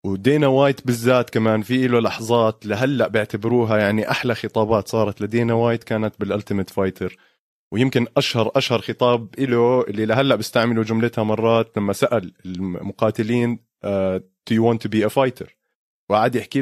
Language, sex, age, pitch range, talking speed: Arabic, male, 20-39, 105-120 Hz, 145 wpm